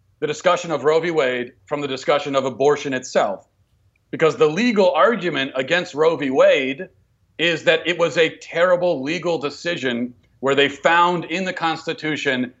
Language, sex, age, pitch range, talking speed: English, male, 40-59, 145-185 Hz, 160 wpm